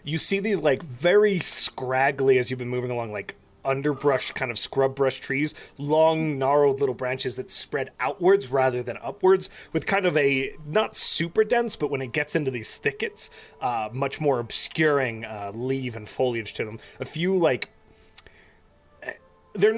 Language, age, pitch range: English, 30-49, 115-145 Hz